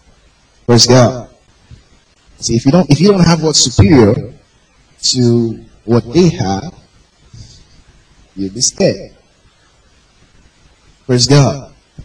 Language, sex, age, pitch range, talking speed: English, male, 30-49, 100-130 Hz, 105 wpm